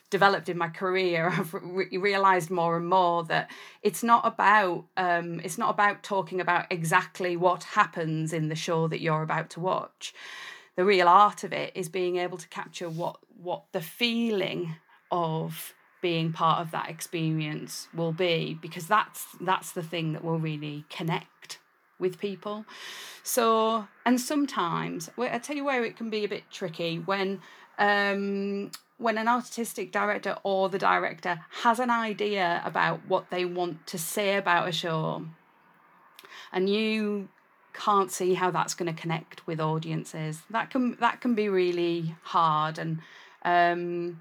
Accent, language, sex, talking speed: British, English, female, 160 wpm